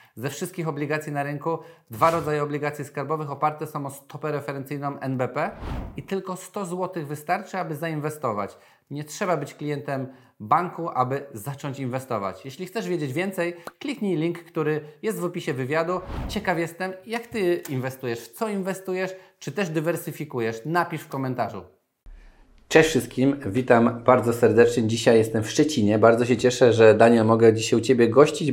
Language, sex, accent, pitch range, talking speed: Polish, male, native, 125-160 Hz, 155 wpm